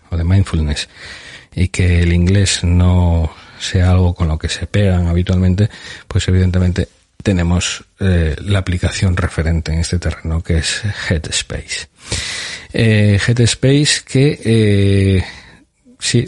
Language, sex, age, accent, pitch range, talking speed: Spanish, male, 40-59, Spanish, 80-95 Hz, 125 wpm